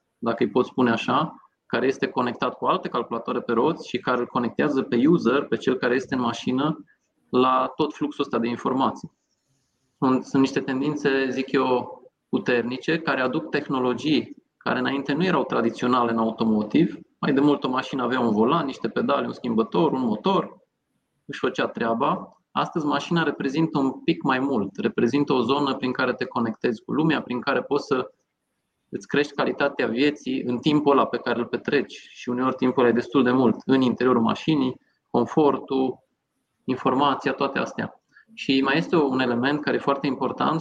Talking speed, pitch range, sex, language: 175 wpm, 125-145 Hz, male, Romanian